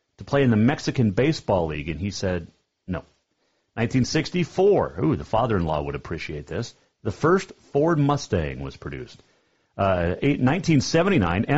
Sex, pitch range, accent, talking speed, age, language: male, 95-140 Hz, American, 135 wpm, 40-59, English